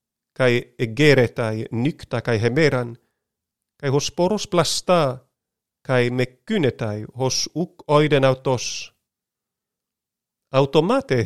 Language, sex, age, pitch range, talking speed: Greek, male, 40-59, 130-160 Hz, 80 wpm